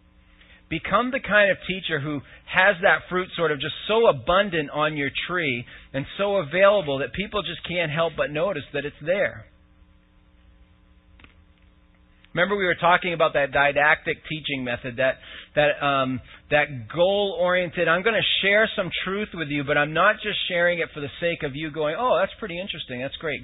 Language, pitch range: English, 135-180 Hz